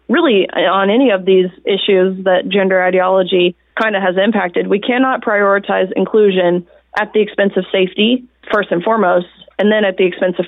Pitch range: 190-220 Hz